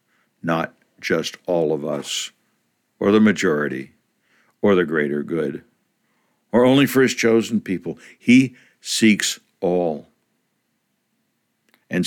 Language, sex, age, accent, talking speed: English, male, 60-79, American, 110 wpm